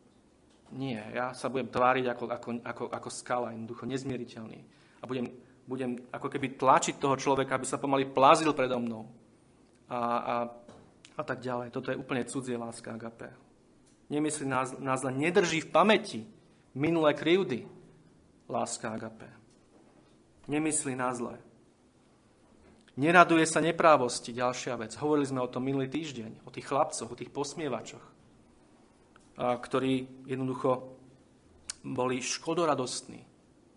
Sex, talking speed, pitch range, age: male, 130 wpm, 120-145 Hz, 30-49